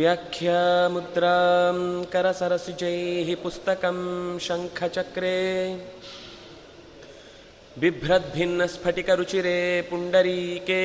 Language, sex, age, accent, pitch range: Kannada, male, 20-39, native, 175-185 Hz